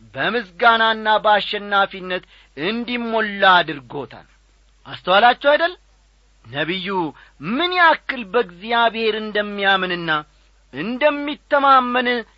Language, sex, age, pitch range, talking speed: Amharic, male, 40-59, 155-245 Hz, 60 wpm